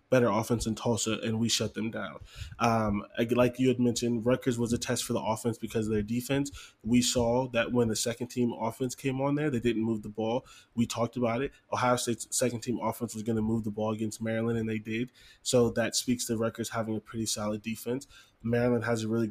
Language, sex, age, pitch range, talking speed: English, male, 20-39, 110-125 Hz, 225 wpm